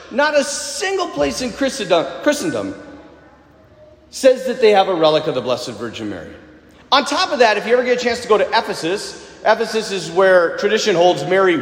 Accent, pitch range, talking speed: American, 185-285 Hz, 190 wpm